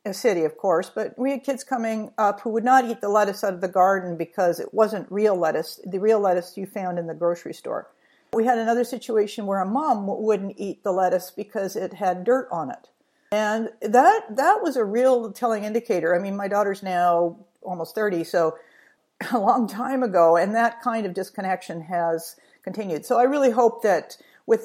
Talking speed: 205 wpm